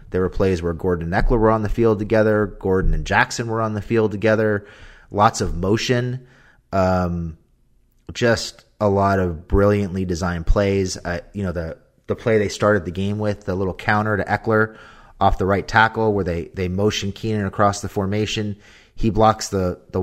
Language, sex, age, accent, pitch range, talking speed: English, male, 30-49, American, 95-110 Hz, 190 wpm